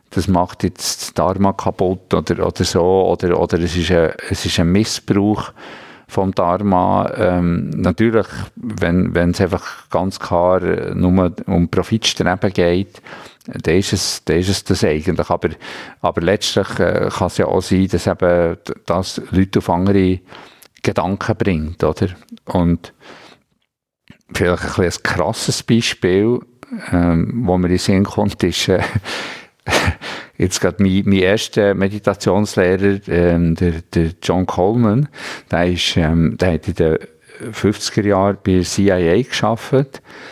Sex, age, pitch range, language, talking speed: male, 50-69, 85-100 Hz, German, 140 wpm